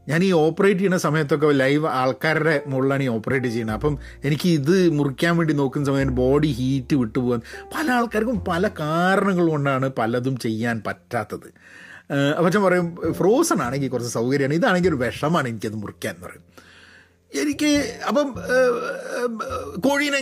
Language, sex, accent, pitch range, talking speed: Malayalam, male, native, 150-230 Hz, 135 wpm